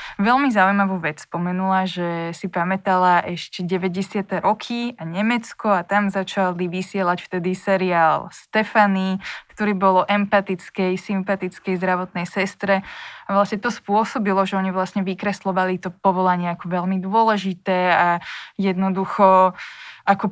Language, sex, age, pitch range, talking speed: Slovak, female, 20-39, 185-205 Hz, 120 wpm